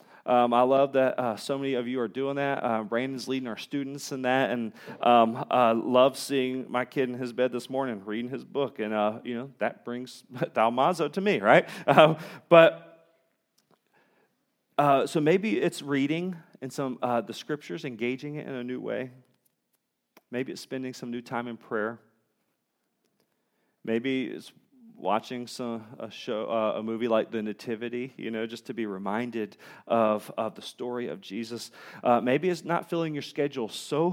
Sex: male